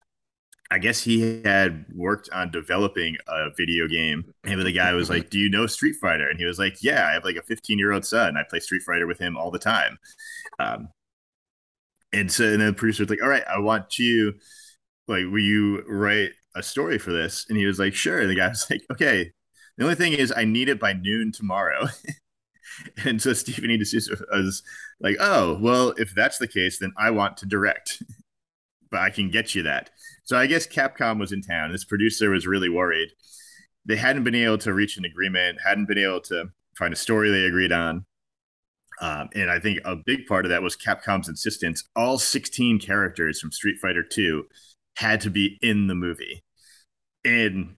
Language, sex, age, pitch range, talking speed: English, male, 30-49, 95-115 Hz, 200 wpm